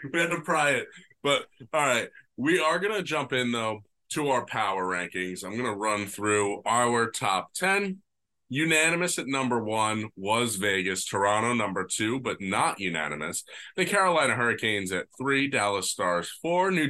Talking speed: 170 wpm